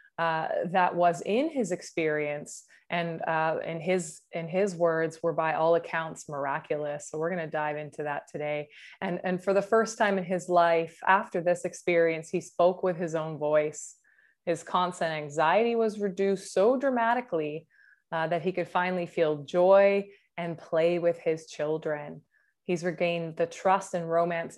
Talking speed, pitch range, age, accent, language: 170 wpm, 165-190 Hz, 20-39, American, English